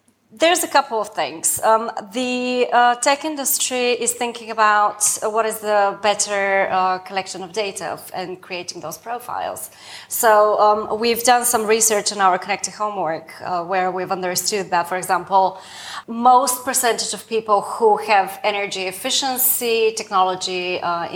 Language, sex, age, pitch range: English, female, 30-49, 185-230 Hz